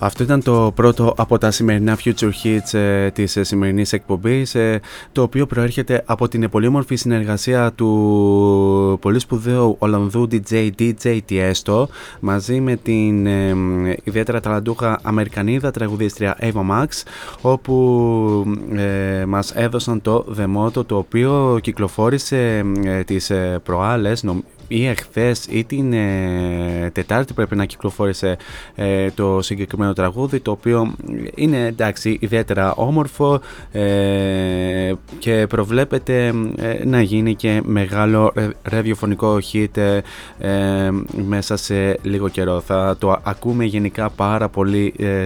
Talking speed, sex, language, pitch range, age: 125 wpm, male, Greek, 100-115 Hz, 20-39